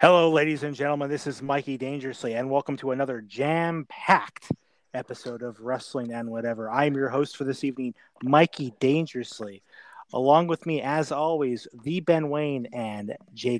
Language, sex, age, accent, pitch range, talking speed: English, male, 30-49, American, 125-160 Hz, 160 wpm